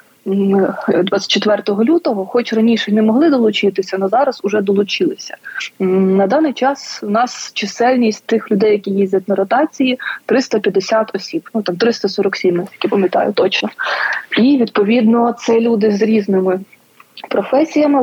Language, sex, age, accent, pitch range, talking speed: Ukrainian, female, 20-39, native, 200-245 Hz, 125 wpm